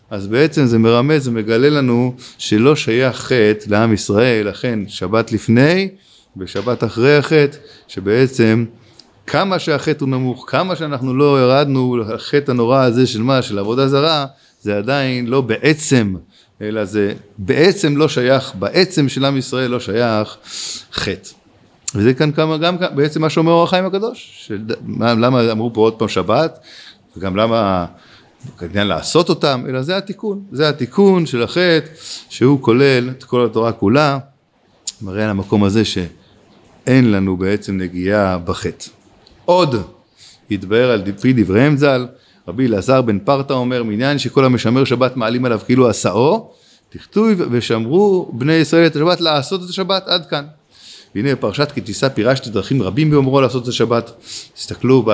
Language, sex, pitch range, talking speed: Hebrew, male, 110-145 Hz, 150 wpm